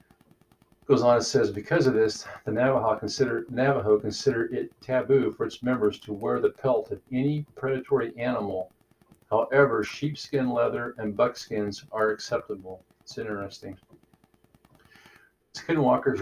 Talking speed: 130 wpm